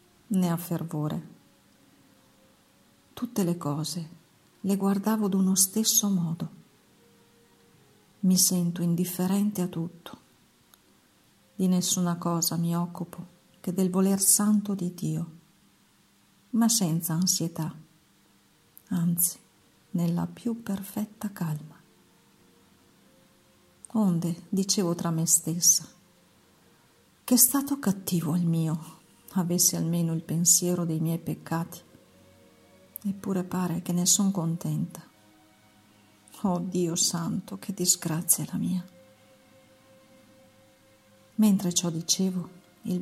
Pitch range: 160-185 Hz